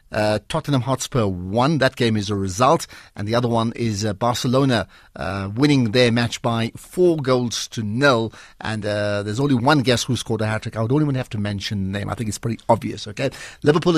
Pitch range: 110-145 Hz